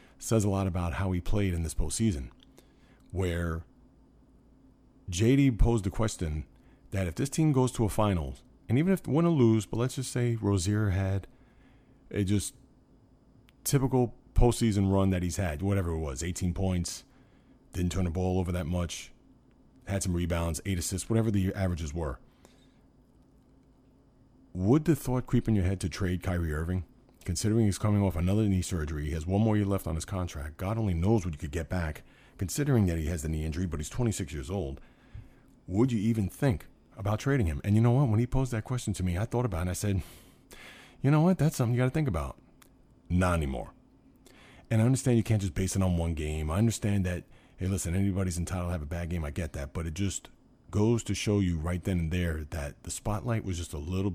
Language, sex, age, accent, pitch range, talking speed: English, male, 30-49, American, 85-115 Hz, 215 wpm